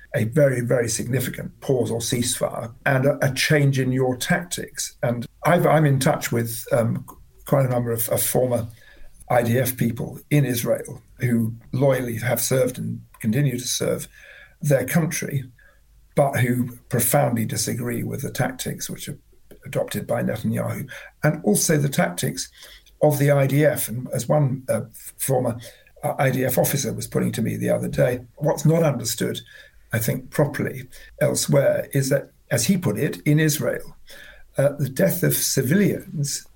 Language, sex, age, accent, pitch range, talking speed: English, male, 50-69, British, 120-150 Hz, 155 wpm